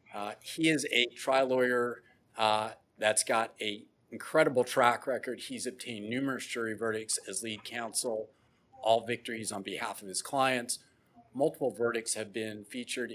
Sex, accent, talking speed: male, American, 150 wpm